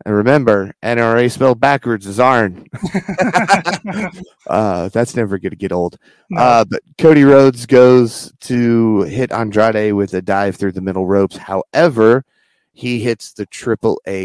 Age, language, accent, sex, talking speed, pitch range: 30-49, English, American, male, 145 wpm, 95-115 Hz